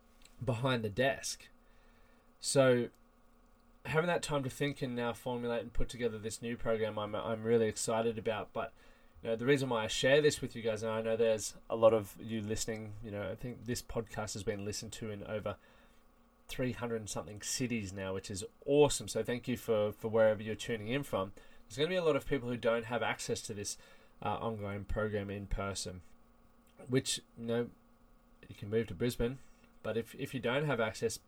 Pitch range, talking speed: 110-125 Hz, 205 wpm